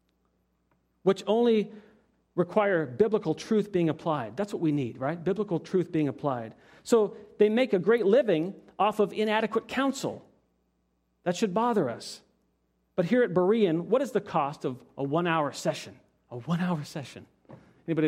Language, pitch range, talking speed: English, 150-225 Hz, 160 wpm